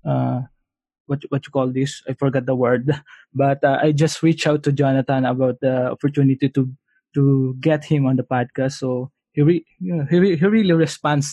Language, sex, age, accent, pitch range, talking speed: English, male, 20-39, Filipino, 130-150 Hz, 200 wpm